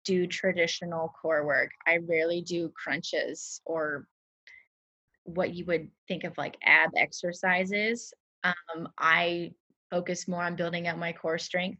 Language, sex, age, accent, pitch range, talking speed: English, female, 20-39, American, 170-195 Hz, 135 wpm